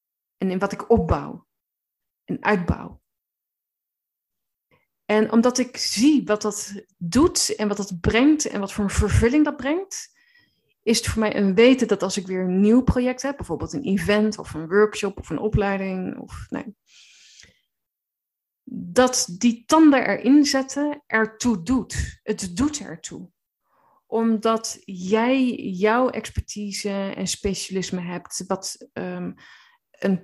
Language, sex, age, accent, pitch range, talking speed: Dutch, female, 20-39, Dutch, 180-245 Hz, 135 wpm